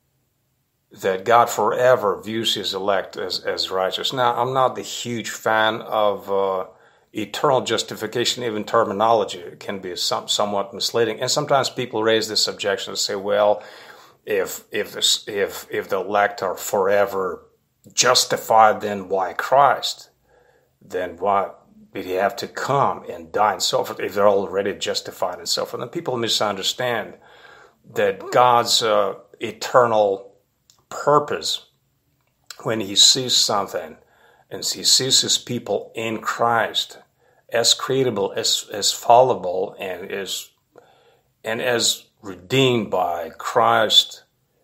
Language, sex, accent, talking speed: English, male, American, 135 wpm